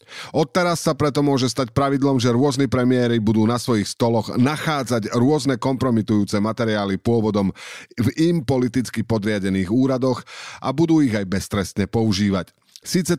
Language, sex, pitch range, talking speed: Slovak, male, 105-140 Hz, 135 wpm